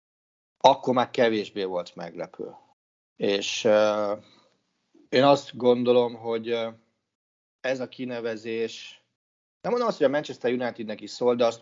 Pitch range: 100-130 Hz